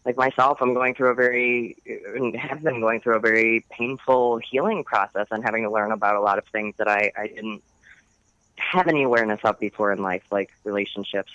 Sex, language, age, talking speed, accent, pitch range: female, English, 20-39, 200 wpm, American, 110-135 Hz